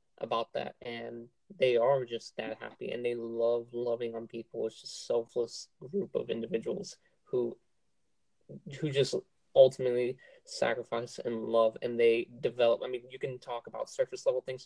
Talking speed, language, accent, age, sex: 160 wpm, English, American, 20-39, male